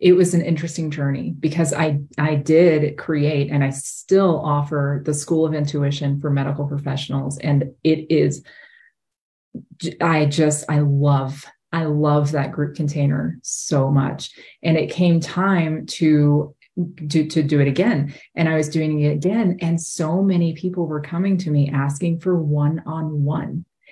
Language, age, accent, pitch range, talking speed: English, 30-49, American, 145-175 Hz, 160 wpm